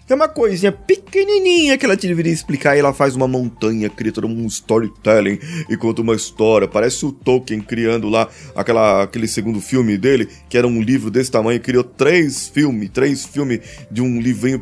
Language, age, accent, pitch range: Portuguese, 20-39, Brazilian, 120-170 Hz